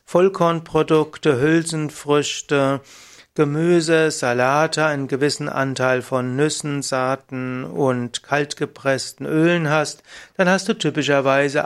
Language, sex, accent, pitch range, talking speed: German, male, German, 130-155 Hz, 95 wpm